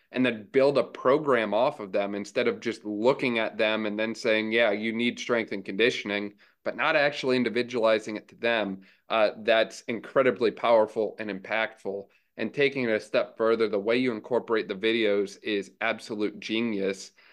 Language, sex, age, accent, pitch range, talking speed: English, male, 30-49, American, 105-130 Hz, 175 wpm